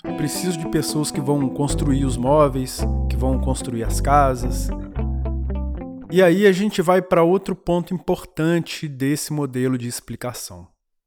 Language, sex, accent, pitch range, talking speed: Portuguese, male, Brazilian, 115-160 Hz, 140 wpm